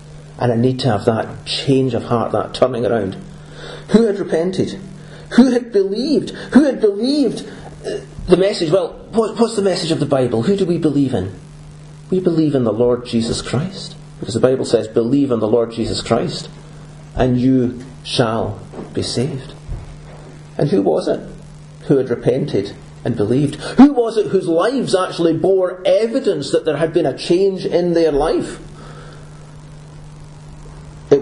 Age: 40-59